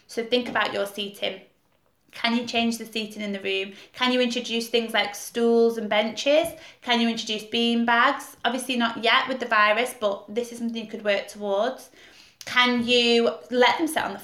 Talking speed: 200 wpm